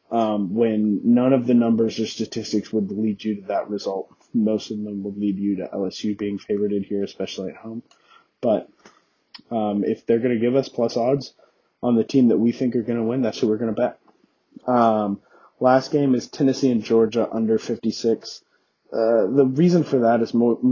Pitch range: 110-125 Hz